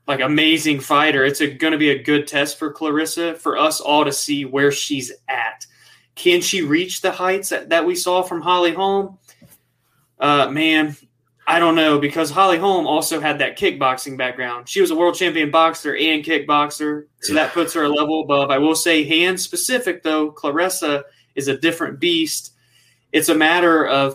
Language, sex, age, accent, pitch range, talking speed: English, male, 20-39, American, 140-170 Hz, 185 wpm